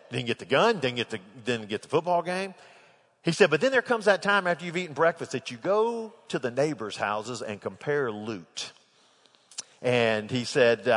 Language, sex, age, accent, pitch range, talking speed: English, male, 50-69, American, 125-180 Hz, 190 wpm